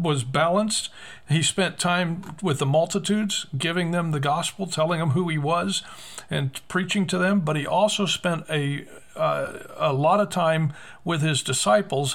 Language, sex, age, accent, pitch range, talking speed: English, male, 50-69, American, 145-180 Hz, 170 wpm